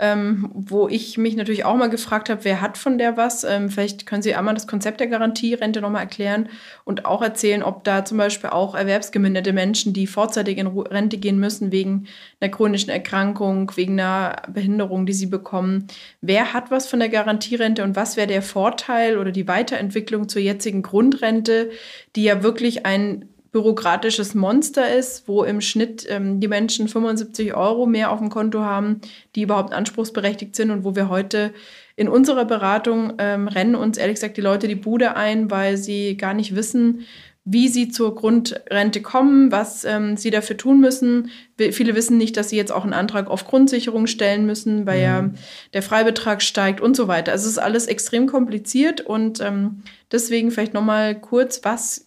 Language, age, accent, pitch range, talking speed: German, 20-39, German, 200-225 Hz, 185 wpm